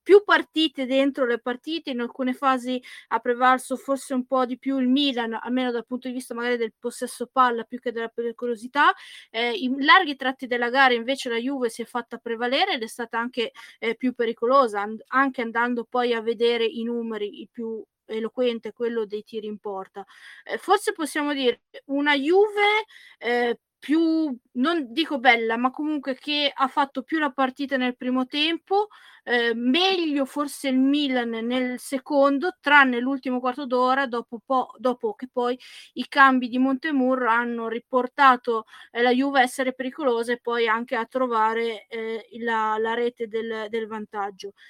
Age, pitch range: 20-39, 235-275 Hz